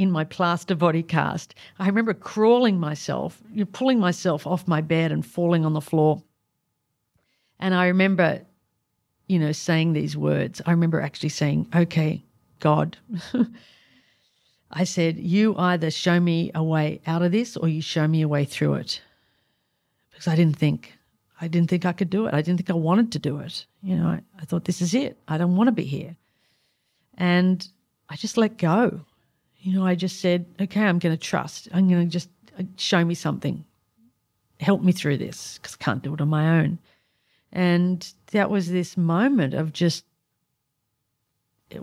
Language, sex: English, female